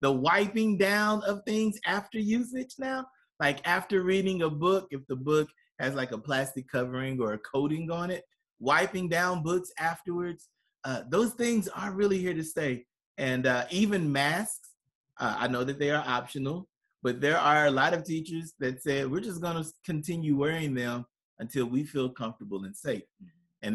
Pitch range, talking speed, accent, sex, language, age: 130-180 Hz, 180 wpm, American, male, English, 30-49